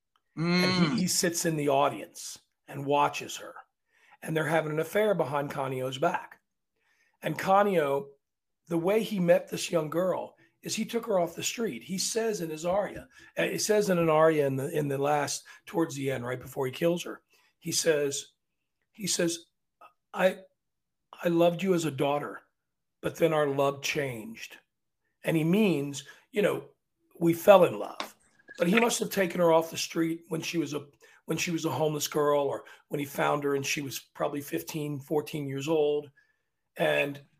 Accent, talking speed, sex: American, 185 wpm, male